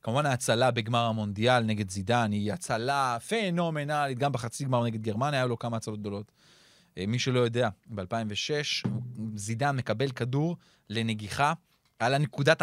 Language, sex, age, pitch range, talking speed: Hebrew, male, 30-49, 115-155 Hz, 140 wpm